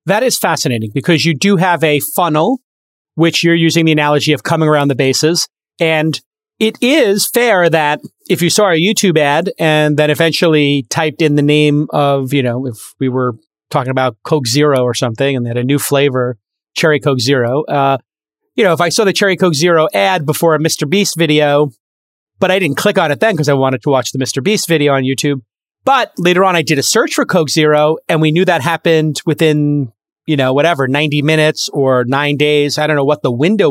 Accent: American